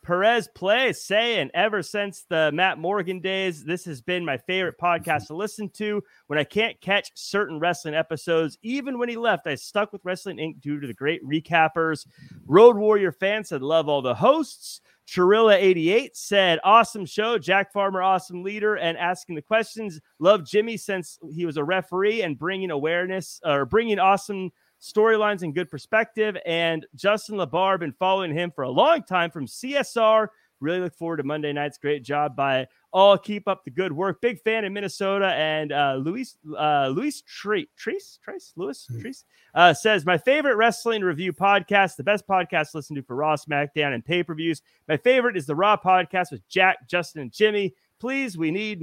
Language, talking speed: English, 180 wpm